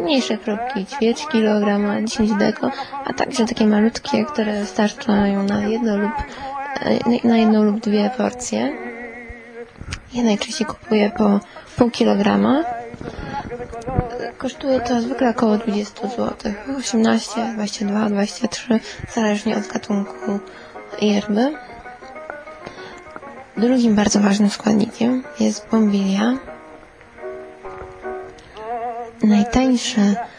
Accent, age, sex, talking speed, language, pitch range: native, 20-39, female, 85 wpm, Polish, 205-245 Hz